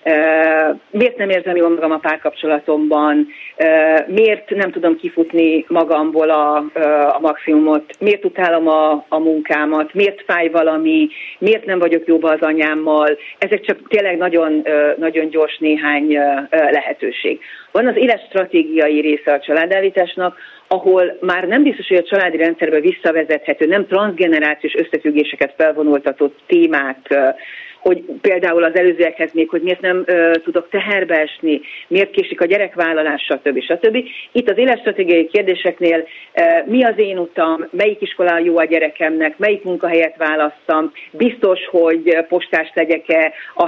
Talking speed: 130 wpm